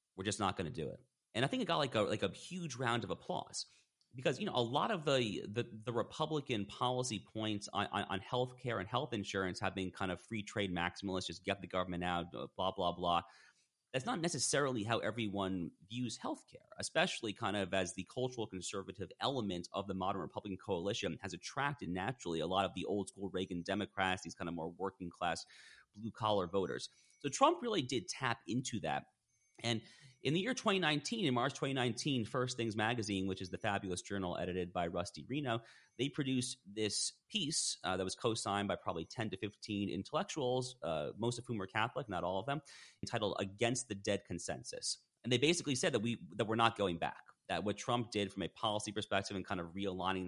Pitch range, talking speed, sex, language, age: 95-120 Hz, 210 wpm, male, English, 30-49